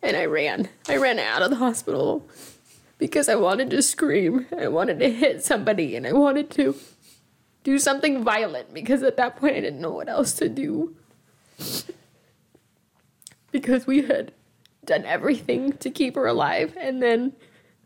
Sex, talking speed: female, 160 wpm